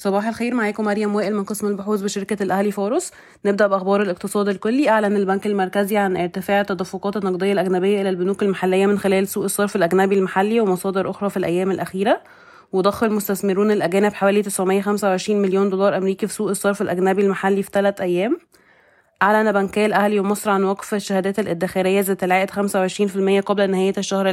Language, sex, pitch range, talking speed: Arabic, female, 190-210 Hz, 165 wpm